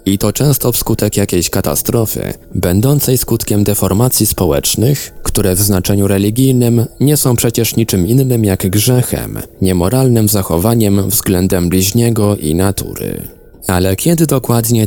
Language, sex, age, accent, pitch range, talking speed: Polish, male, 20-39, native, 95-120 Hz, 120 wpm